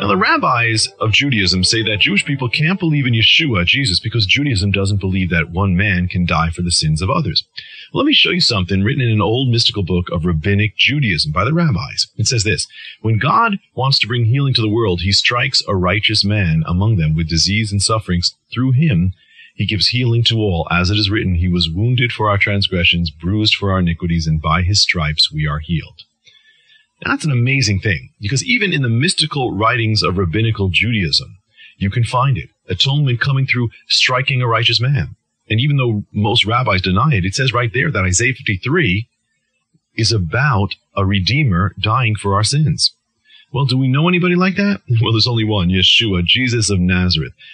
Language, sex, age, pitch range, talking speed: English, male, 30-49, 95-130 Hz, 200 wpm